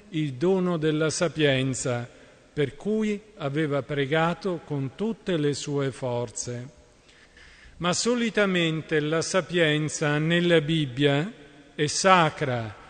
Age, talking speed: 50-69, 100 wpm